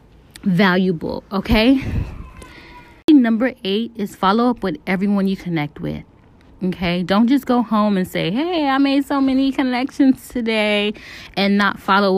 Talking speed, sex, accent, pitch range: 145 wpm, female, American, 190-245 Hz